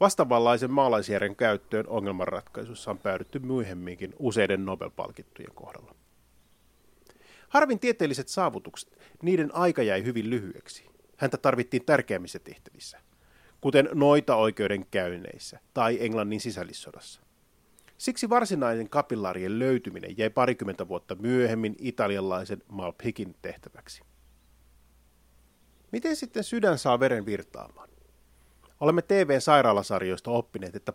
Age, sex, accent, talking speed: 30-49, male, native, 95 wpm